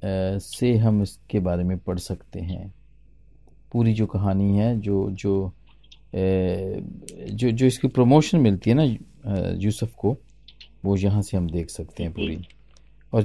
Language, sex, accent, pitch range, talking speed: Hindi, male, native, 100-150 Hz, 140 wpm